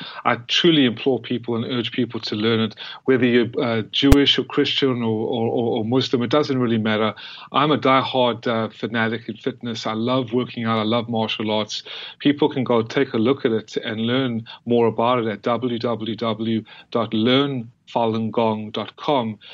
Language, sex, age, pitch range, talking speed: English, male, 30-49, 115-140 Hz, 170 wpm